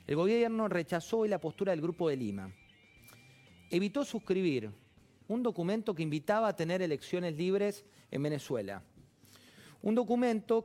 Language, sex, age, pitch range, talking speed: Spanish, male, 40-59, 135-185 Hz, 135 wpm